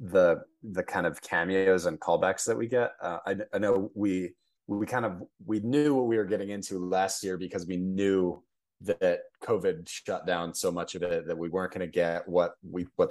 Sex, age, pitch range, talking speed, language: male, 30-49, 85-125 Hz, 215 wpm, English